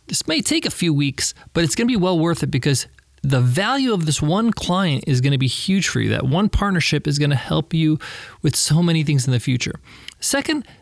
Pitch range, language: 145-205 Hz, English